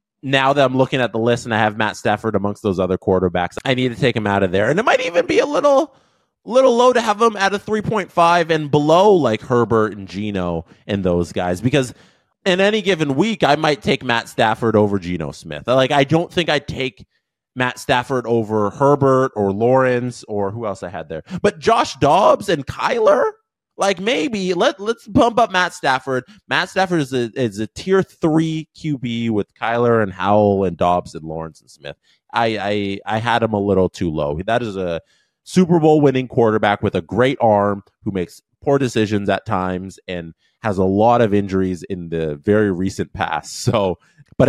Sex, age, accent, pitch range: male, 20-39, American, 100-150 Hz